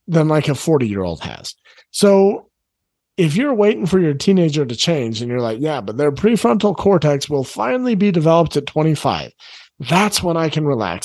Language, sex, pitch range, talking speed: English, male, 130-170 Hz, 180 wpm